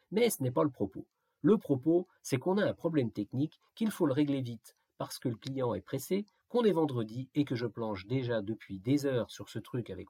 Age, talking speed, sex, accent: 50-69, 240 wpm, male, French